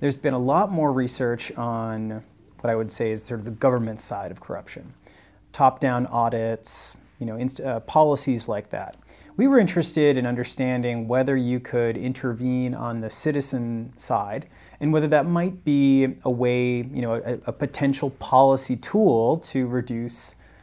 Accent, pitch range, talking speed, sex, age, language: American, 110-135 Hz, 165 wpm, male, 30-49, English